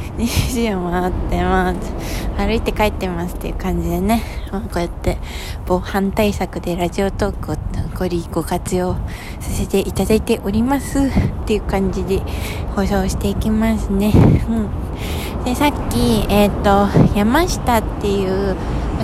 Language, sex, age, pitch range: Japanese, female, 20-39, 180-225 Hz